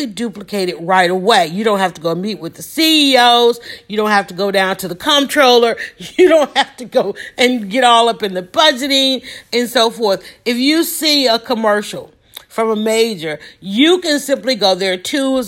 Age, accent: 40-59, American